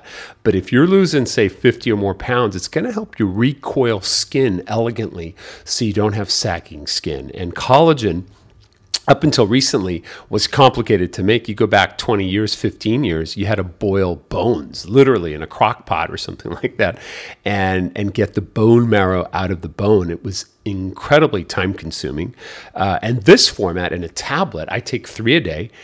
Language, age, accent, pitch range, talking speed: English, 40-59, American, 95-120 Hz, 180 wpm